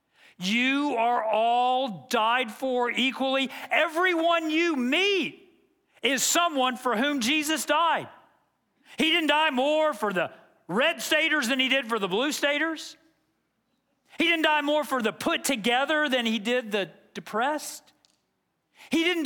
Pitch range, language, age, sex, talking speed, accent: 200-300 Hz, English, 40-59, male, 140 wpm, American